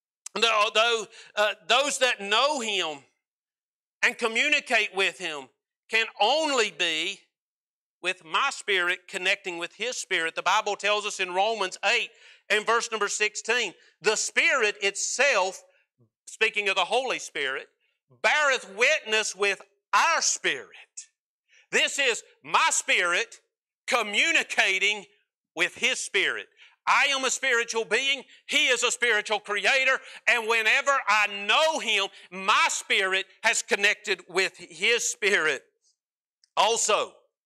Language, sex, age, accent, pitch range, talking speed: English, male, 50-69, American, 195-265 Hz, 120 wpm